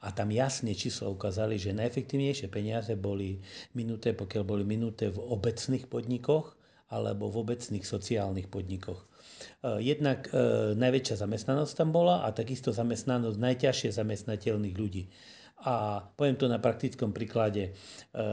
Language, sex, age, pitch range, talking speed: Slovak, male, 40-59, 110-125 Hz, 130 wpm